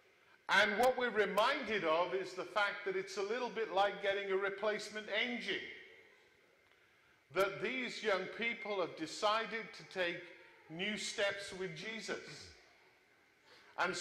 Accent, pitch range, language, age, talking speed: British, 195-255 Hz, English, 40-59, 135 wpm